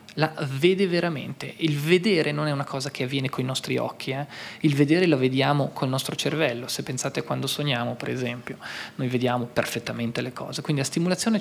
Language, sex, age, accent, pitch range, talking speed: Italian, male, 20-39, native, 150-205 Hz, 195 wpm